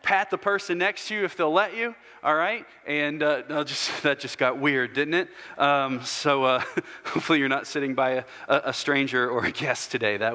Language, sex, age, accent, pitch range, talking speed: English, male, 40-59, American, 130-160 Hz, 220 wpm